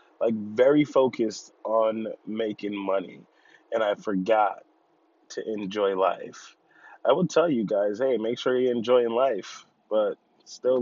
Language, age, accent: English, 20-39, American